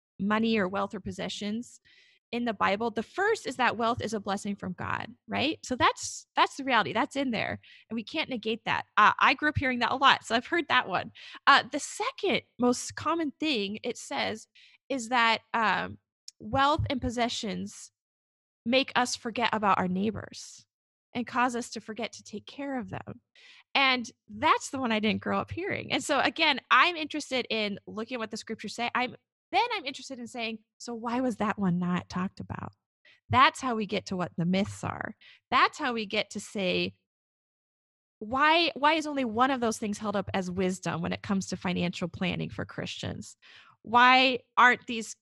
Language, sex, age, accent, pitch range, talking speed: English, female, 20-39, American, 205-260 Hz, 195 wpm